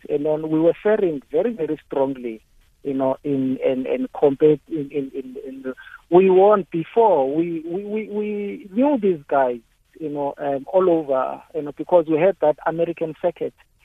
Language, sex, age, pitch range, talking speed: English, male, 50-69, 135-170 Hz, 180 wpm